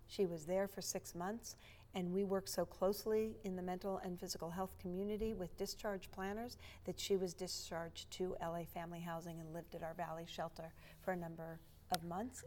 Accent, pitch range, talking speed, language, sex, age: American, 170-220 Hz, 190 wpm, English, female, 40-59